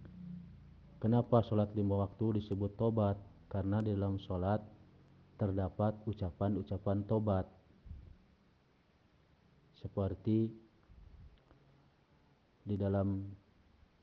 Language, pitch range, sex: Indonesian, 95-105 Hz, male